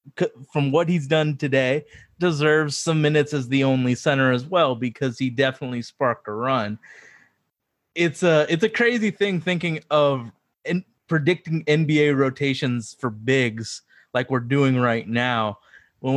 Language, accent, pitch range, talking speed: English, American, 125-155 Hz, 150 wpm